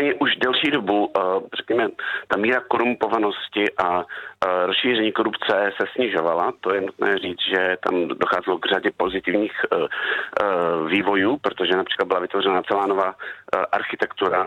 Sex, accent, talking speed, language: male, native, 125 wpm, Czech